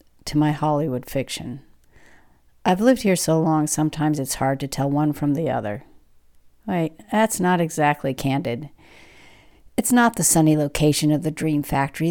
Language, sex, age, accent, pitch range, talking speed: English, female, 50-69, American, 145-185 Hz, 160 wpm